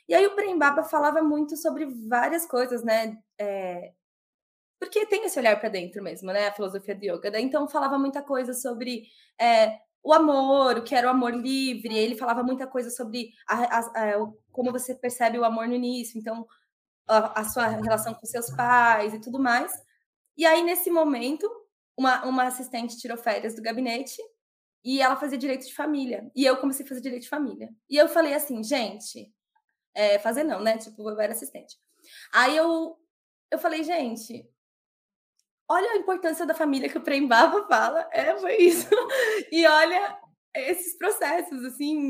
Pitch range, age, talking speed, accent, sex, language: 235-320 Hz, 20-39, 180 wpm, Brazilian, female, Portuguese